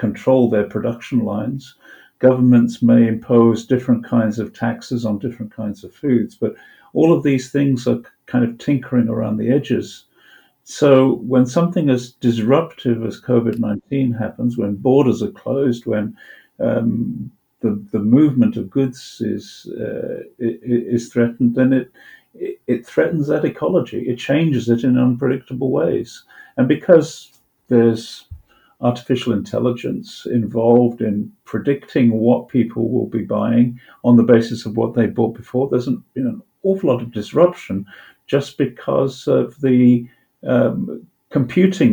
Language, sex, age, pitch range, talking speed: English, male, 50-69, 115-130 Hz, 140 wpm